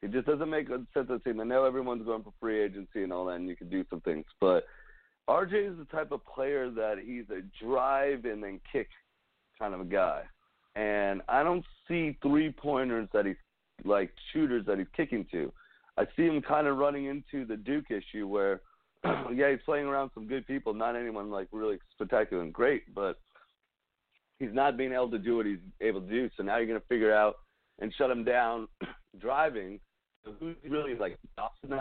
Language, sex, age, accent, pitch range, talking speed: English, male, 40-59, American, 95-140 Hz, 200 wpm